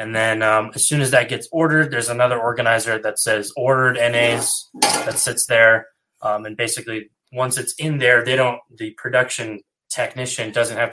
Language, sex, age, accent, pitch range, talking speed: English, male, 20-39, American, 105-120 Hz, 180 wpm